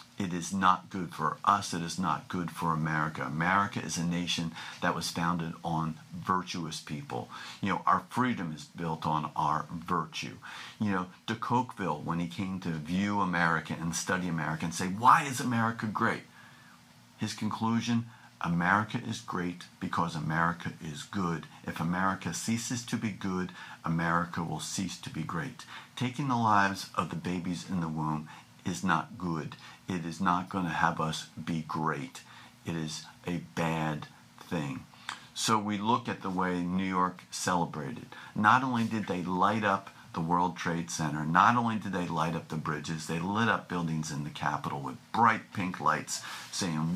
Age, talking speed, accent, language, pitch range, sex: 50-69, 175 wpm, American, English, 80-100 Hz, male